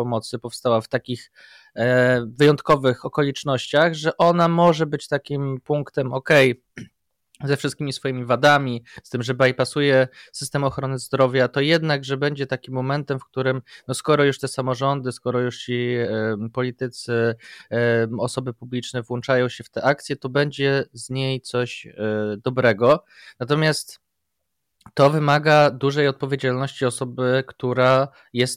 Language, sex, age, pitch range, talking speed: Polish, male, 20-39, 110-135 Hz, 130 wpm